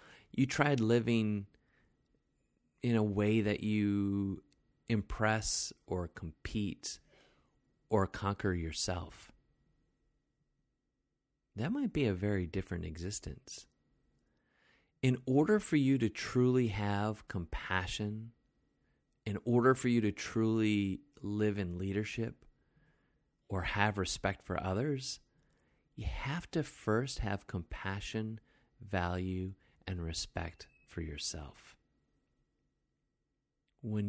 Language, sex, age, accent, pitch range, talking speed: English, male, 30-49, American, 90-120 Hz, 95 wpm